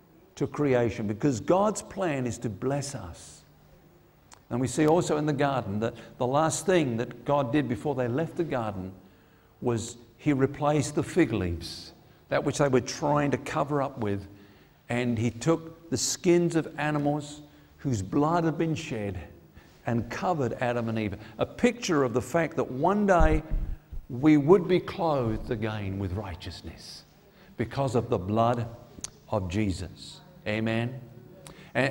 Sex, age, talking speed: male, 50-69, 155 wpm